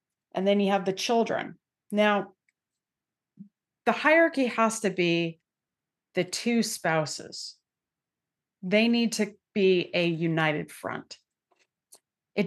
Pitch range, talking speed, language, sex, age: 175-230 Hz, 110 wpm, English, female, 30-49